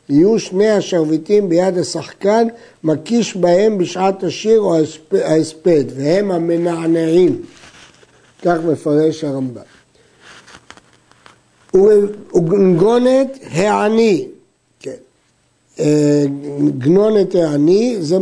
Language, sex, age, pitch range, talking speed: Hebrew, male, 60-79, 170-215 Hz, 70 wpm